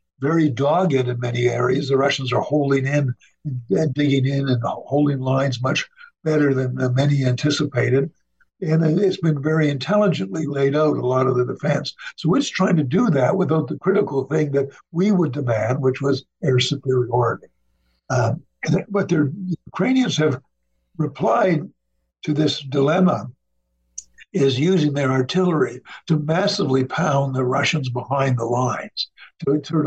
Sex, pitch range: male, 130-155 Hz